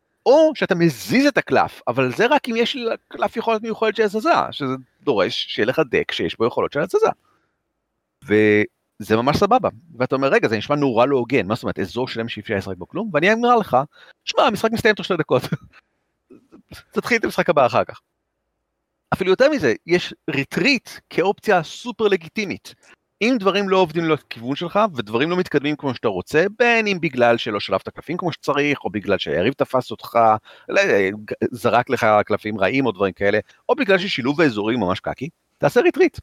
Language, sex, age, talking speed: Hebrew, male, 40-59, 180 wpm